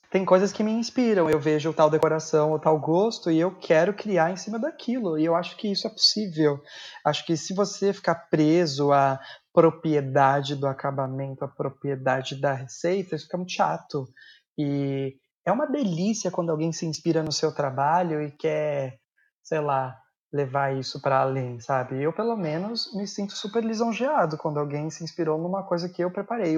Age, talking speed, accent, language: 20-39, 180 wpm, Brazilian, Portuguese